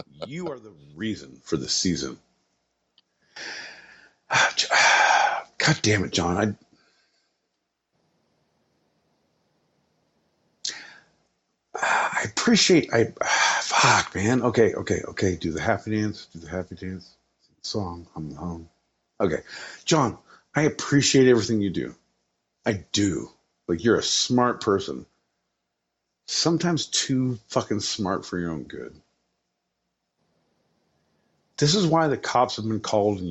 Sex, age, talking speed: male, 50-69, 110 wpm